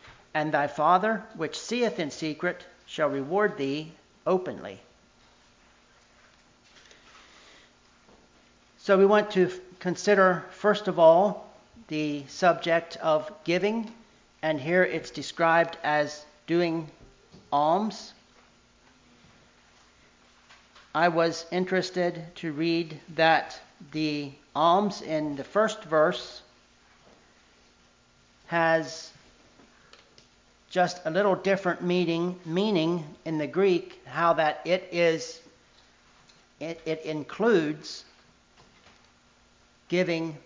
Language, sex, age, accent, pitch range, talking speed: English, male, 40-59, American, 135-175 Hz, 90 wpm